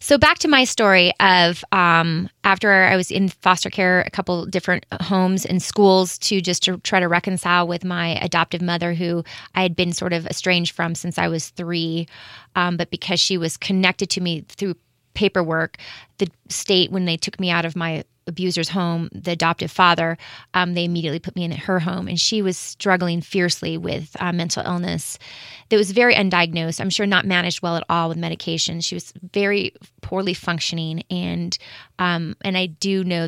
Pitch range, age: 165-190 Hz, 30-49